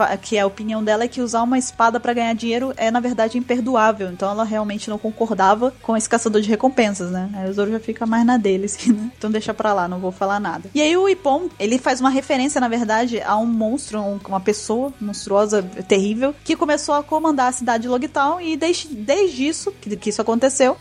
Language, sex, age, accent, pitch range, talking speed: Portuguese, female, 20-39, Brazilian, 215-265 Hz, 230 wpm